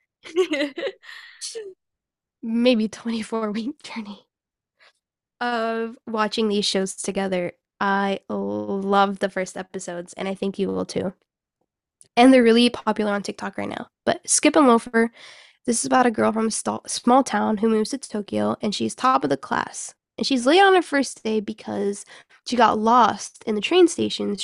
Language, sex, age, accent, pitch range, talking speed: English, female, 10-29, American, 205-245 Hz, 160 wpm